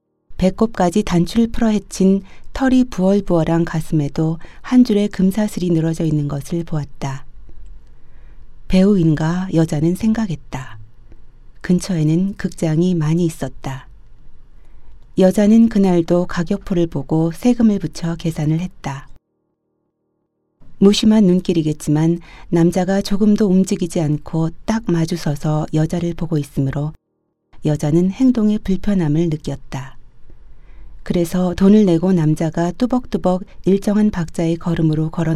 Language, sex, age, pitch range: Korean, female, 40-59, 155-195 Hz